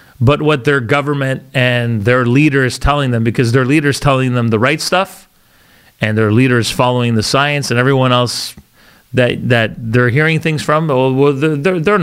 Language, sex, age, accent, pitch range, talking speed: English, male, 30-49, American, 120-150 Hz, 180 wpm